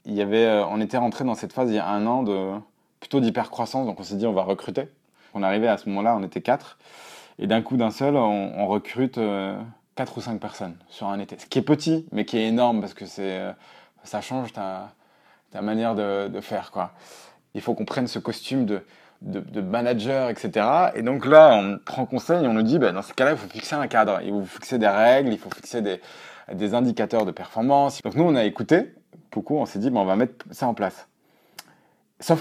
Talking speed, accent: 240 wpm, French